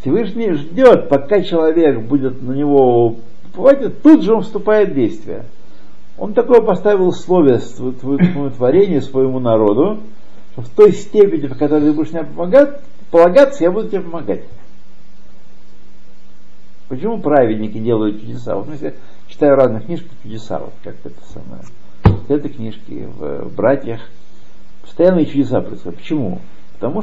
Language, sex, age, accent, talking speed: Russian, male, 60-79, native, 140 wpm